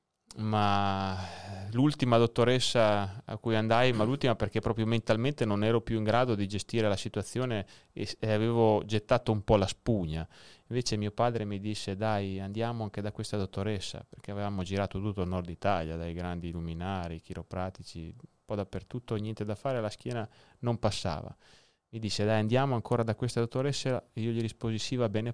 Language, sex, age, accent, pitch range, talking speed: Italian, male, 30-49, native, 95-115 Hz, 175 wpm